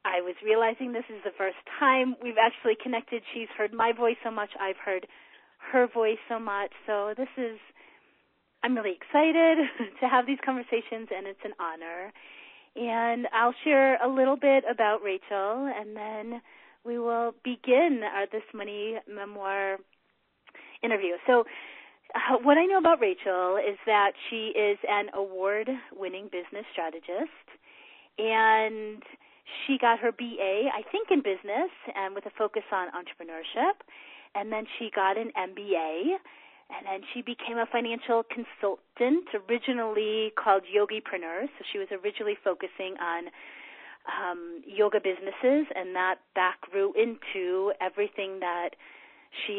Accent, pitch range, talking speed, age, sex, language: American, 200-245 Hz, 145 wpm, 30-49, female, English